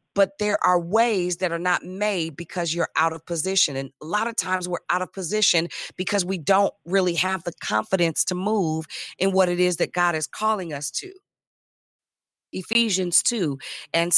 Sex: female